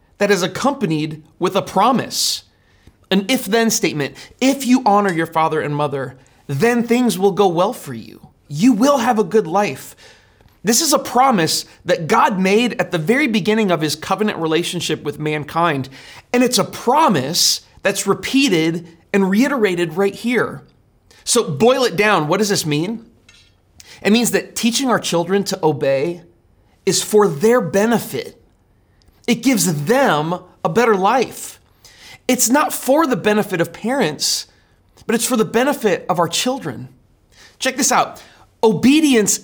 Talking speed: 155 wpm